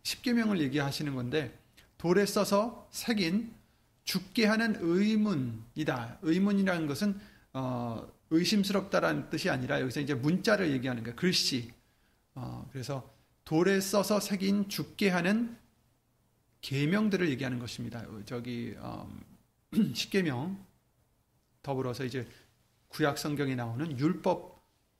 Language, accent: Korean, native